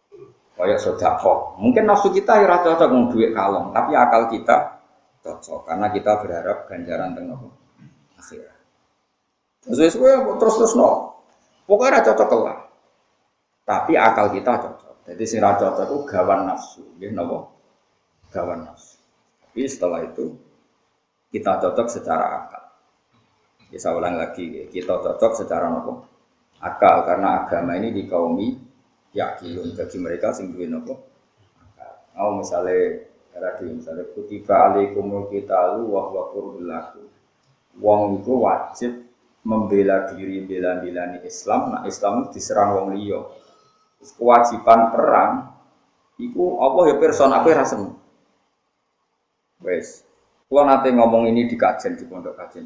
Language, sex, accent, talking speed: Indonesian, male, native, 125 wpm